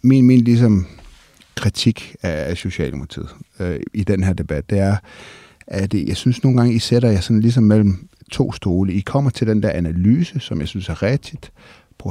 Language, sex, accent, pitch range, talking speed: Danish, male, native, 85-110 Hz, 190 wpm